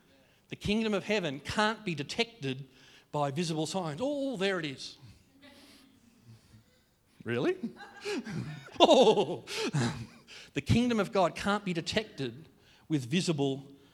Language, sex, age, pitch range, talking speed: English, male, 40-59, 135-190 Hz, 110 wpm